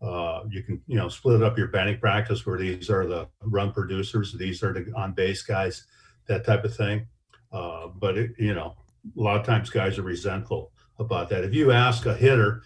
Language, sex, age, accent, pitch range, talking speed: English, male, 50-69, American, 95-115 Hz, 215 wpm